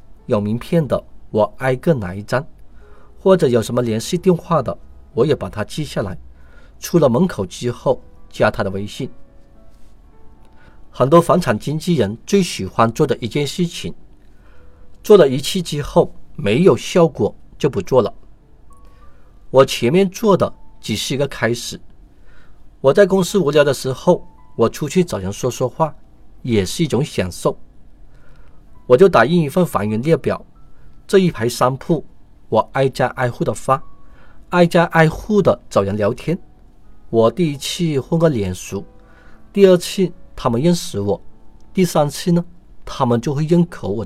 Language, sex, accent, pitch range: Chinese, male, native, 105-170 Hz